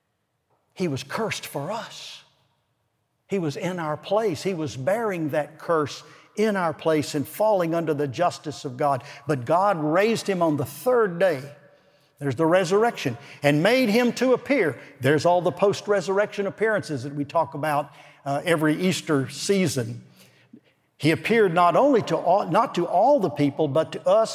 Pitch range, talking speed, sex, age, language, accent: 145-190 Hz, 170 wpm, male, 60-79, English, American